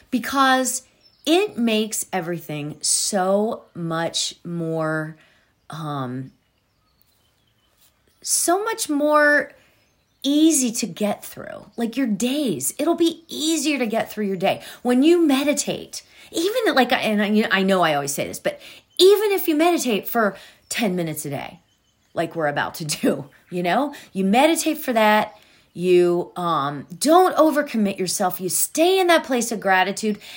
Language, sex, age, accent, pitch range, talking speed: English, female, 40-59, American, 165-275 Hz, 140 wpm